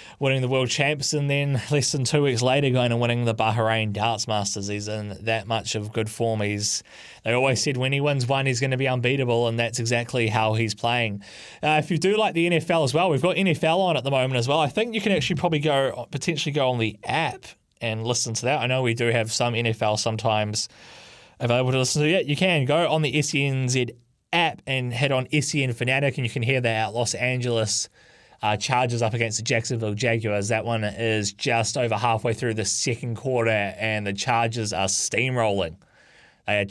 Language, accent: English, Australian